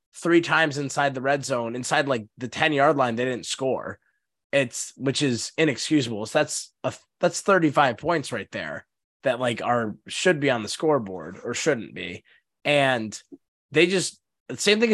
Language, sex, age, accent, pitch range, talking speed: English, male, 20-39, American, 120-155 Hz, 175 wpm